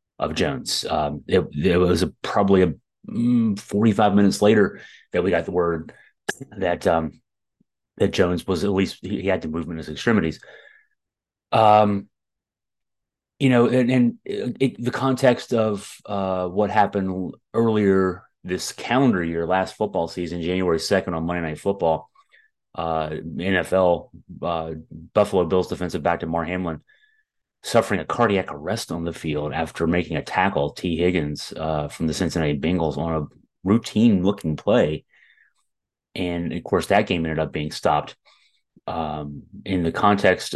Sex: male